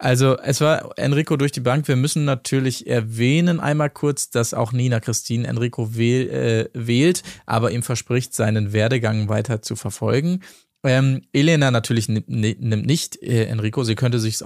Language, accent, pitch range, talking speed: German, German, 115-135 Hz, 160 wpm